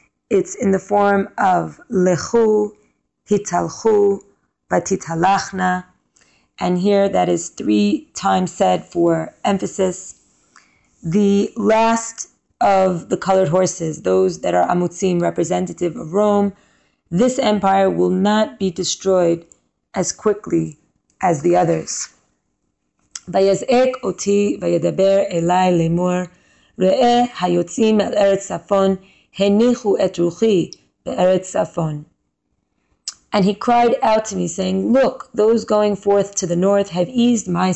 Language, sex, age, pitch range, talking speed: English, female, 20-39, 180-205 Hz, 105 wpm